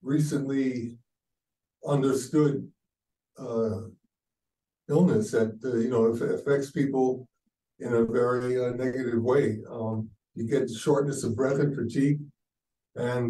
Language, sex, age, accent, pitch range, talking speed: English, male, 60-79, American, 115-140 Hz, 115 wpm